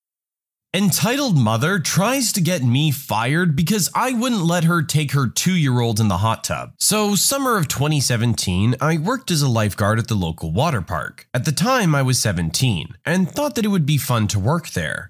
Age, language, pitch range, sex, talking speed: 20-39, English, 115-180 Hz, male, 195 wpm